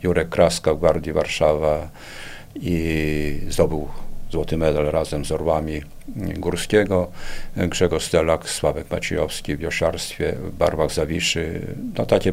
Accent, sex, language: native, male, Polish